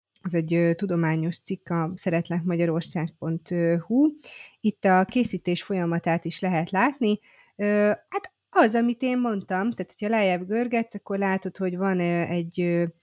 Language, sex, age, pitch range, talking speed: Hungarian, female, 30-49, 170-200 Hz, 125 wpm